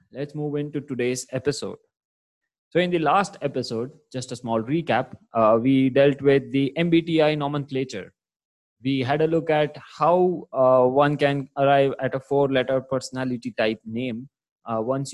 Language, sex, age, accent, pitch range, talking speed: English, male, 20-39, Indian, 115-140 Hz, 155 wpm